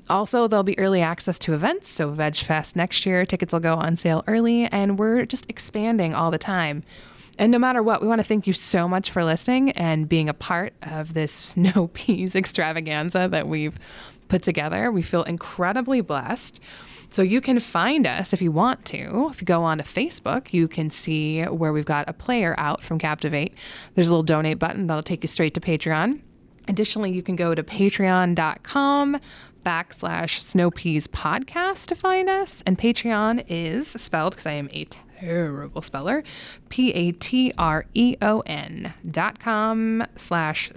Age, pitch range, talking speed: 20-39, 160-220 Hz, 175 wpm